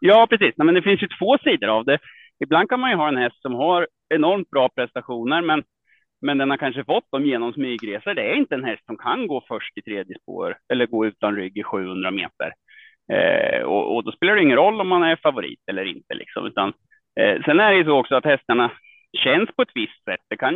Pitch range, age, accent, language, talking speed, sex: 120-175 Hz, 30-49, Norwegian, Swedish, 235 wpm, male